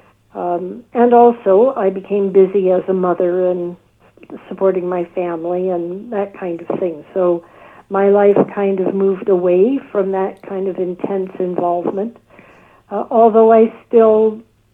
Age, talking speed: 60-79, 145 wpm